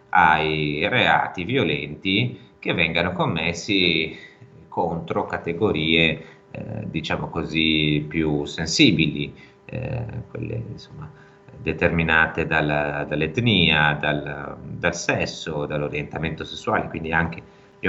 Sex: male